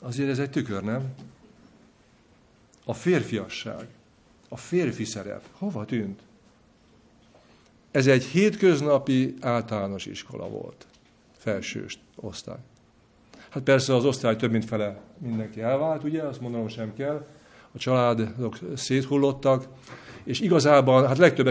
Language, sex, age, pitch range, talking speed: Hungarian, male, 50-69, 115-150 Hz, 115 wpm